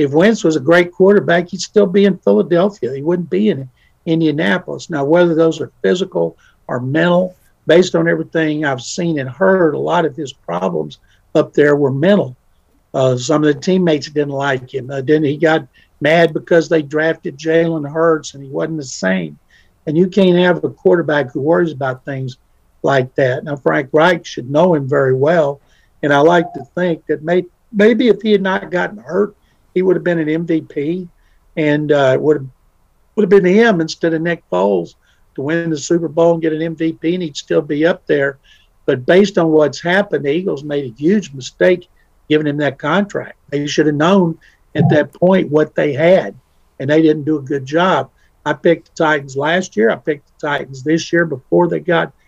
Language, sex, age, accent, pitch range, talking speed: English, male, 60-79, American, 145-175 Hz, 200 wpm